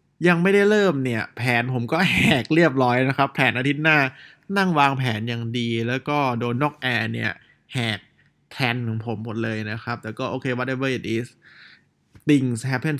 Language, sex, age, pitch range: Thai, male, 20-39, 115-145 Hz